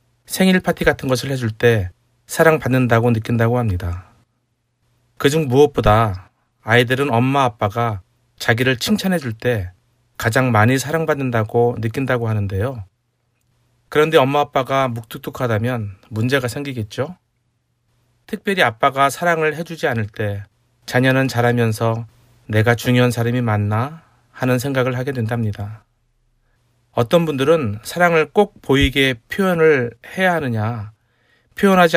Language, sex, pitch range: Korean, male, 115-140 Hz